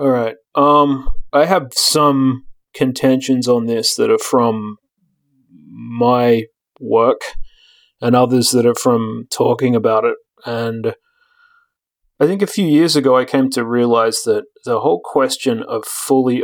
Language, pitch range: English, 120-145 Hz